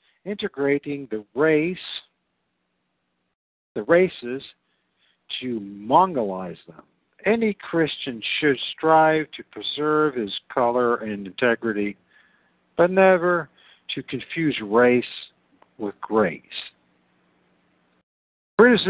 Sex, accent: male, American